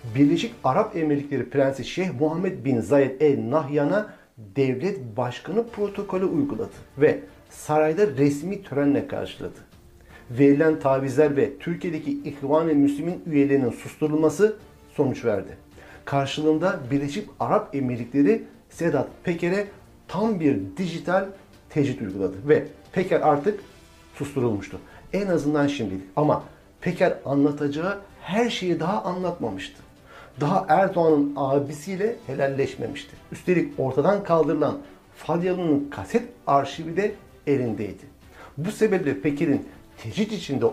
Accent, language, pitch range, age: native, Turkish, 135-175 Hz, 60-79